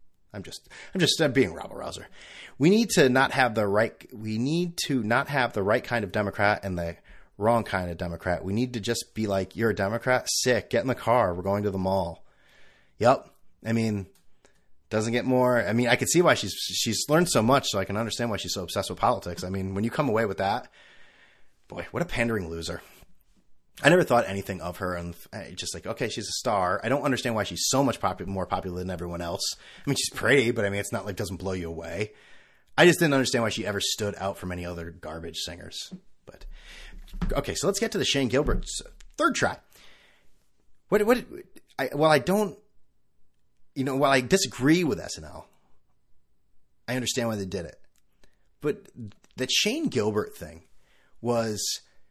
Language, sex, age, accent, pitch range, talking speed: English, male, 30-49, American, 95-130 Hz, 210 wpm